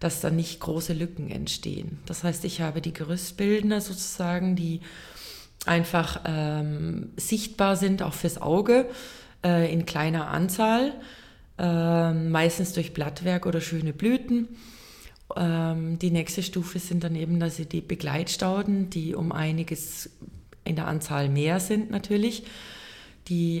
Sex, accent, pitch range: female, German, 165-190 Hz